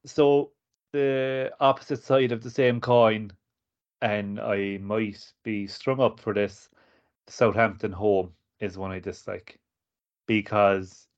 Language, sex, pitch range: English, male, 100-115 Hz